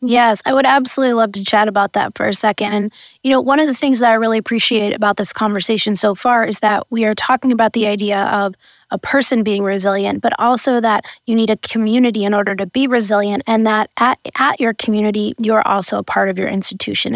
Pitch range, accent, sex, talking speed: 205-240 Hz, American, female, 230 wpm